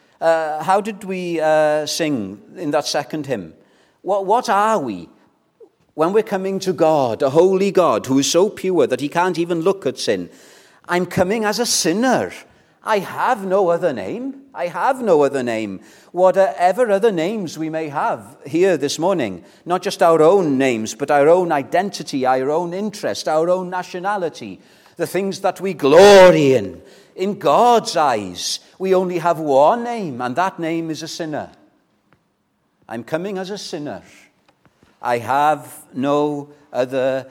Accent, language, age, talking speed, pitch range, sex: British, English, 40-59, 160 wpm, 145-190 Hz, male